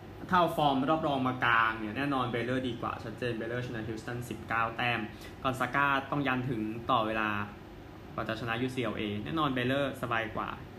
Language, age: Thai, 20-39